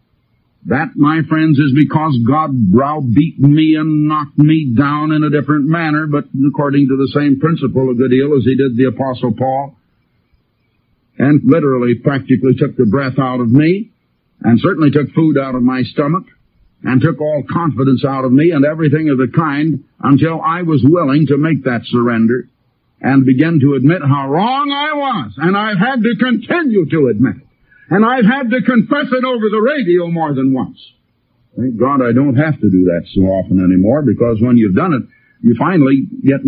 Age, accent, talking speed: 60-79, American, 190 wpm